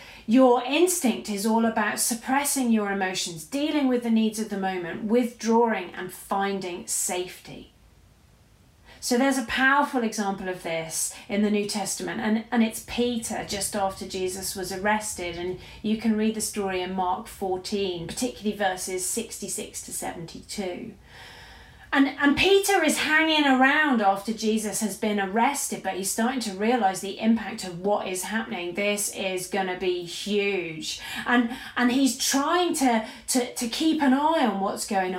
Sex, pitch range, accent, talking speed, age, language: female, 190-245 Hz, British, 160 wpm, 30-49, English